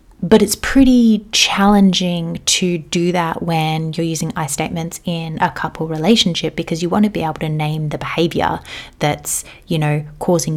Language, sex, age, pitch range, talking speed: English, female, 30-49, 160-205 Hz, 170 wpm